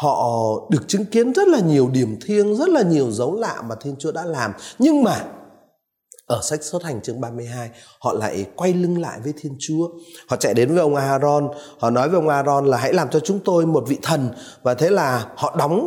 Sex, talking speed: male, 225 wpm